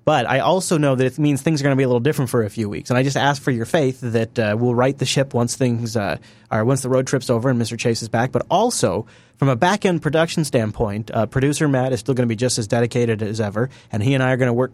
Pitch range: 115-140 Hz